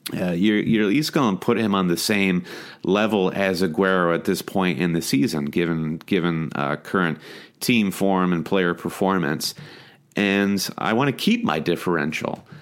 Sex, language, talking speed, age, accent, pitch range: male, English, 175 wpm, 30-49, American, 85-100 Hz